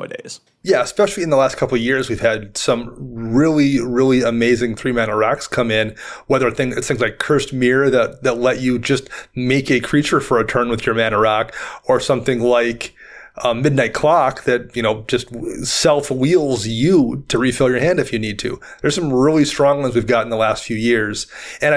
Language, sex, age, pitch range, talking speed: English, male, 30-49, 120-145 Hz, 200 wpm